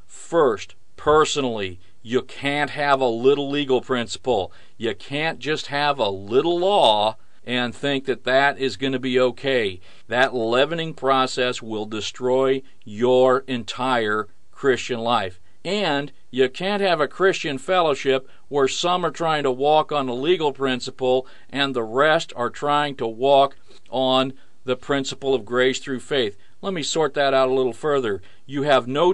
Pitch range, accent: 125-150 Hz, American